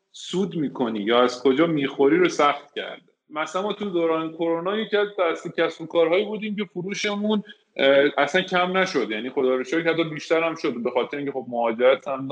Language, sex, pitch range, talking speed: Persian, male, 130-180 Hz, 180 wpm